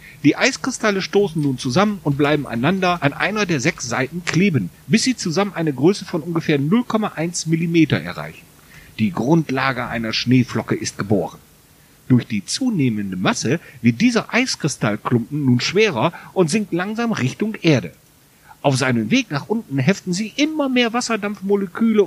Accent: German